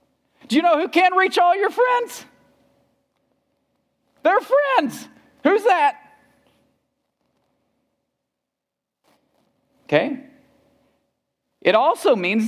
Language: English